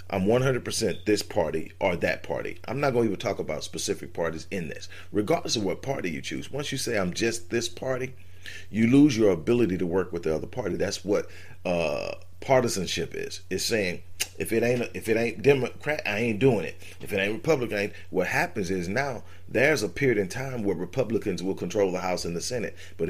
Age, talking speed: 40-59, 215 wpm